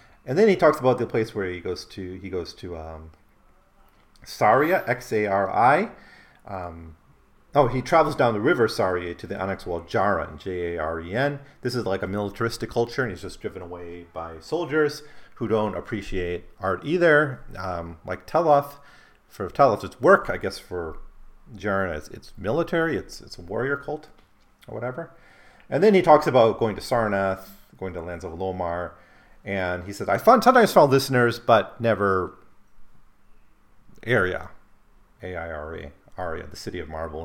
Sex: male